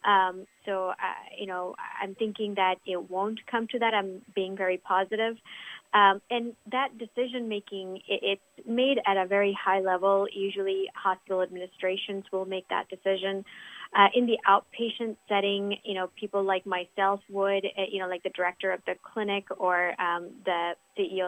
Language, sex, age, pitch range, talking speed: English, female, 30-49, 185-205 Hz, 165 wpm